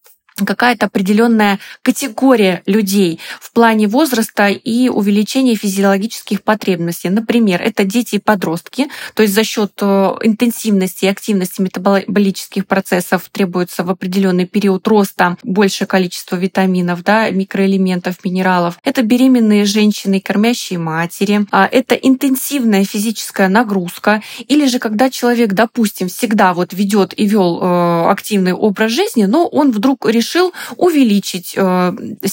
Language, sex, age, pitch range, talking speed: Russian, female, 20-39, 190-225 Hz, 115 wpm